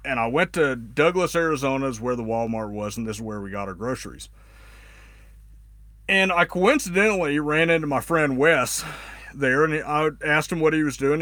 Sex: male